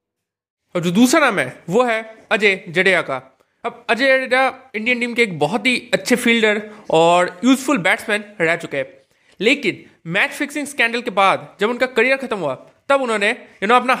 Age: 20-39